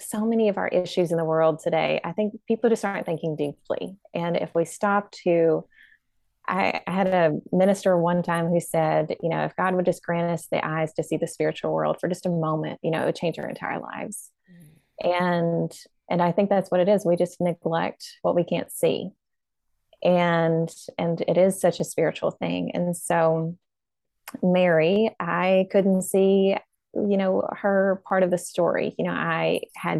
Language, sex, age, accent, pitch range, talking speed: English, female, 20-39, American, 165-190 Hz, 190 wpm